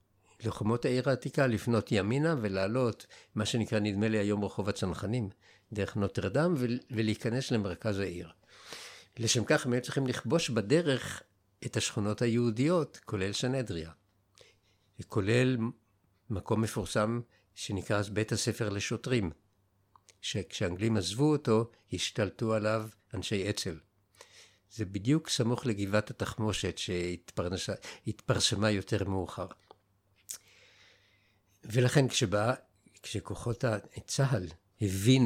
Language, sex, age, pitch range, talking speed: Hebrew, male, 60-79, 100-120 Hz, 100 wpm